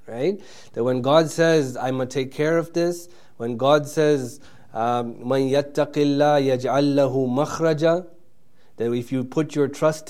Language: English